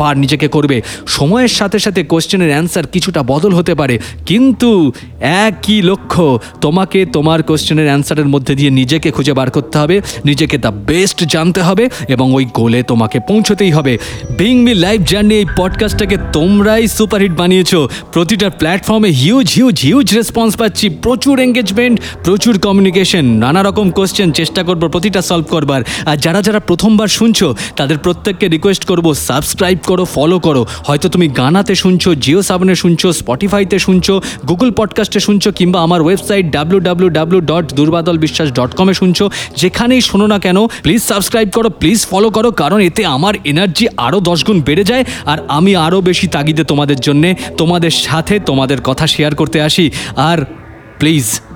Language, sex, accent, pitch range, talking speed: Bengali, male, native, 150-200 Hz, 135 wpm